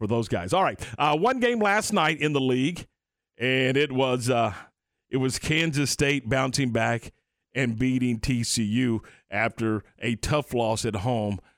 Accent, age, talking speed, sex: American, 50-69, 165 wpm, male